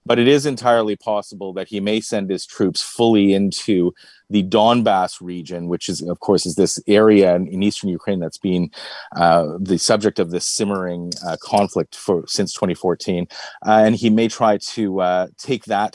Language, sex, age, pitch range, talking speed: English, male, 30-49, 90-110 Hz, 180 wpm